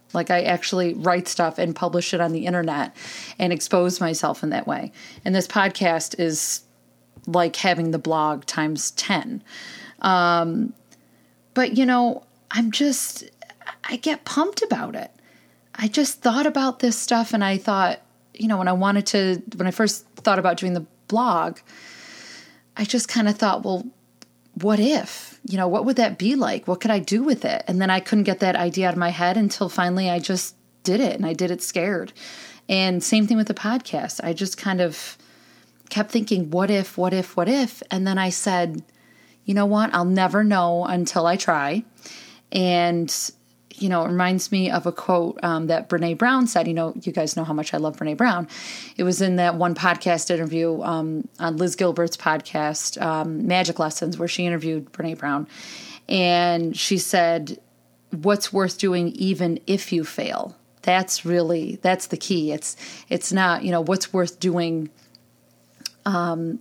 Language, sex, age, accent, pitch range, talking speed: English, female, 30-49, American, 170-210 Hz, 185 wpm